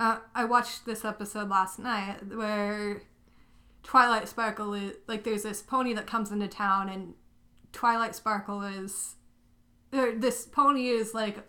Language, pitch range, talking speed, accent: English, 195-230 Hz, 145 wpm, American